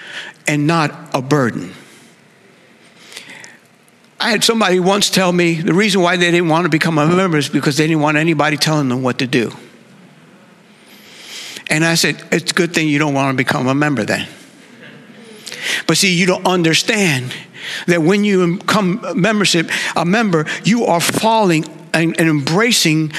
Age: 60-79